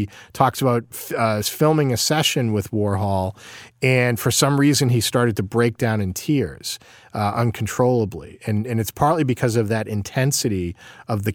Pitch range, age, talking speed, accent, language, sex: 105-130 Hz, 40-59, 165 wpm, American, English, male